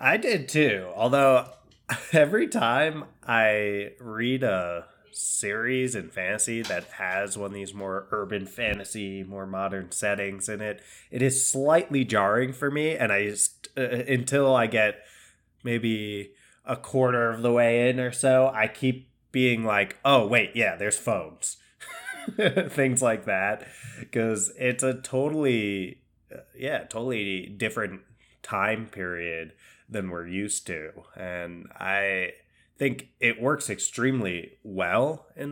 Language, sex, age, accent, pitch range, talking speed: English, male, 20-39, American, 95-130 Hz, 135 wpm